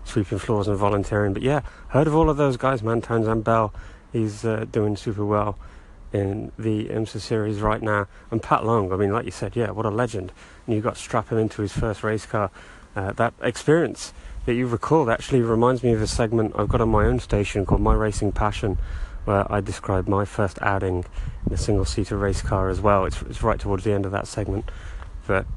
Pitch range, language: 95-115 Hz, English